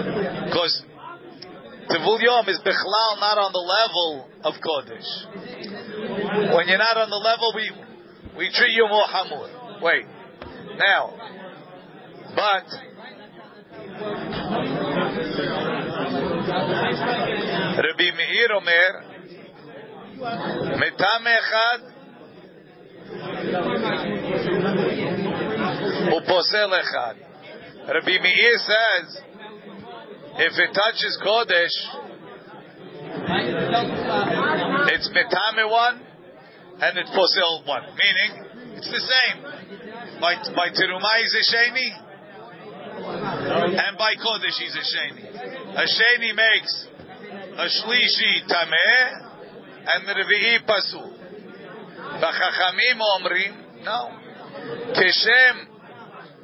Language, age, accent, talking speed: English, 40-59, American, 80 wpm